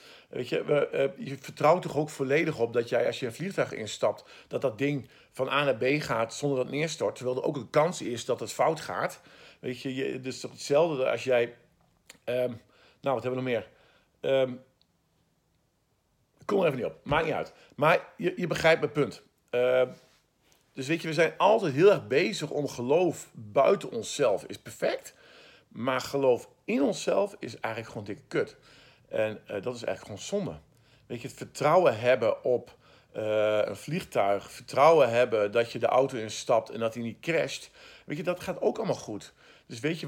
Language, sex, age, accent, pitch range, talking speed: Dutch, male, 50-69, Dutch, 125-160 Hz, 200 wpm